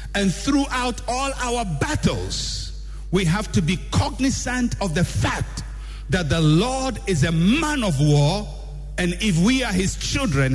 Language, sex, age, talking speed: English, male, 60-79, 155 wpm